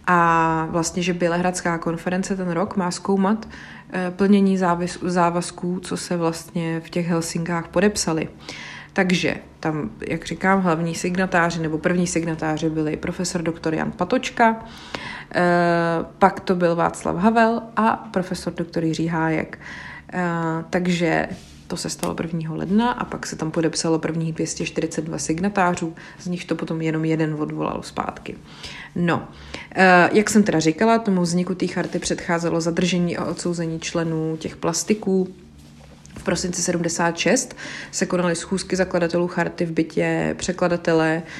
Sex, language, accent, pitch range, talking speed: female, Czech, native, 165-185 Hz, 135 wpm